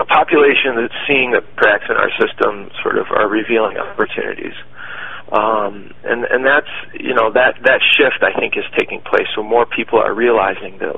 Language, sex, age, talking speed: English, male, 40-59, 185 wpm